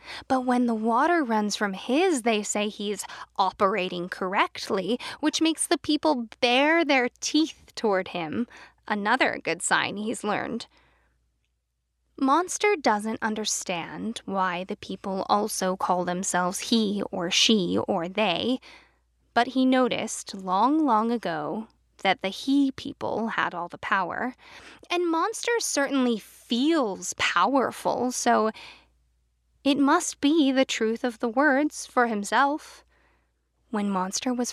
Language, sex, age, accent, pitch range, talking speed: English, female, 10-29, American, 195-265 Hz, 125 wpm